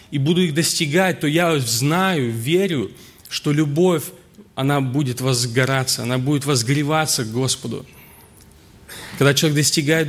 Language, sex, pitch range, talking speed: Russian, male, 125-155 Hz, 125 wpm